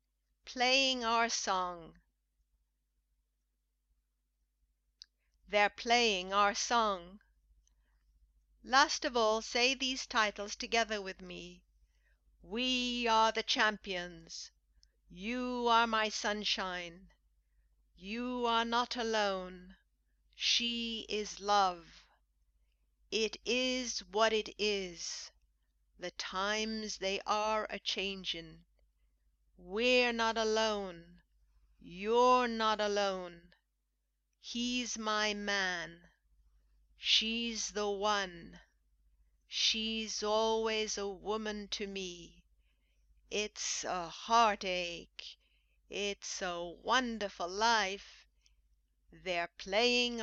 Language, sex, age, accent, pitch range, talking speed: English, female, 50-69, American, 165-230 Hz, 80 wpm